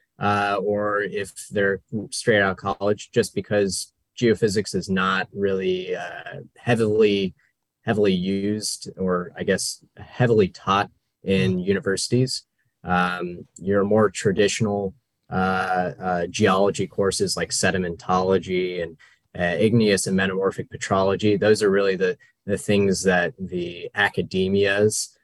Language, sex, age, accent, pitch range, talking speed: English, male, 20-39, American, 95-110 Hz, 120 wpm